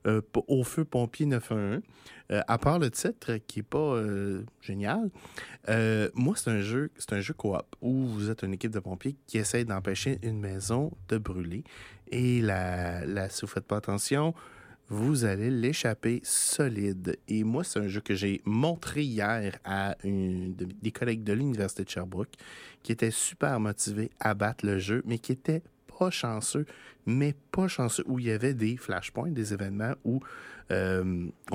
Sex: male